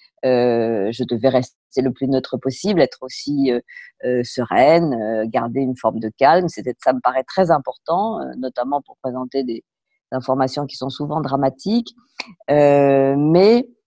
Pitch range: 130-170 Hz